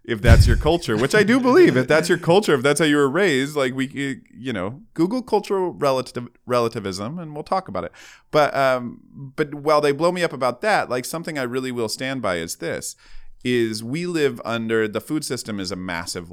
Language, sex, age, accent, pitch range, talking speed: English, male, 30-49, American, 110-150 Hz, 220 wpm